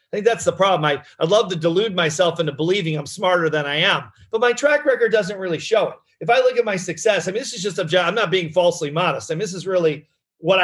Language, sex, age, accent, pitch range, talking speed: English, male, 40-59, American, 160-215 Hz, 280 wpm